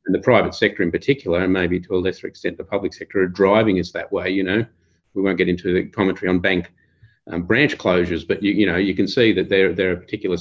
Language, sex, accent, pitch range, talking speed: English, male, Australian, 90-105 Hz, 260 wpm